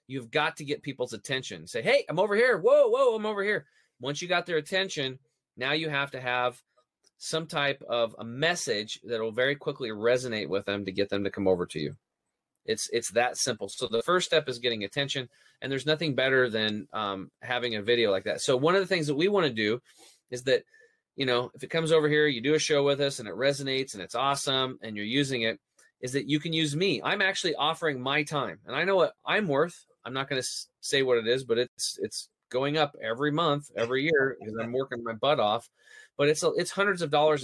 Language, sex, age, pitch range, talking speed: English, male, 30-49, 125-160 Hz, 240 wpm